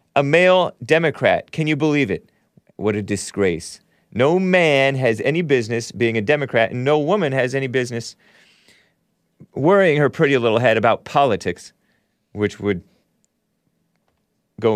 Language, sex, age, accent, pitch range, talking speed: English, male, 30-49, American, 115-165 Hz, 140 wpm